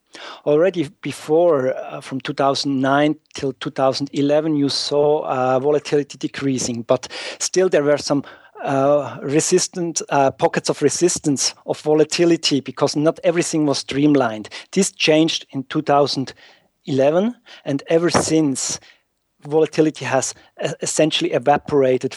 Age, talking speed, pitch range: 40-59, 110 wpm, 130-155 Hz